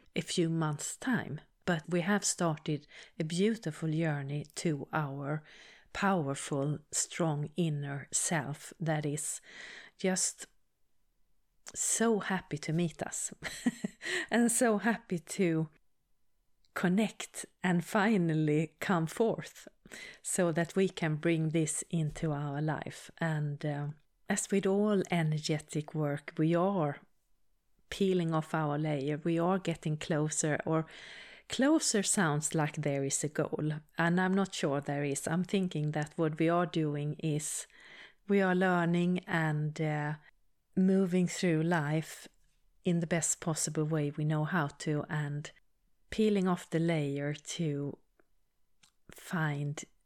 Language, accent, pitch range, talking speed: English, Swedish, 150-185 Hz, 125 wpm